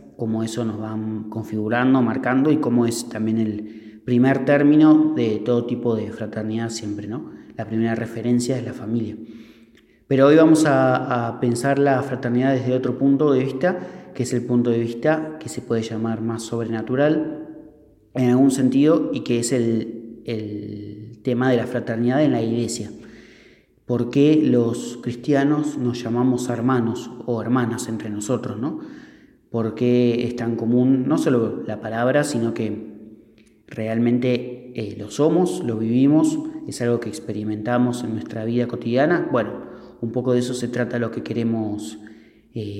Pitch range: 110-130 Hz